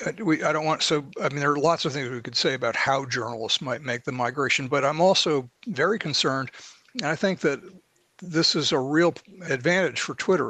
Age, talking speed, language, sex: 60-79, 215 wpm, English, male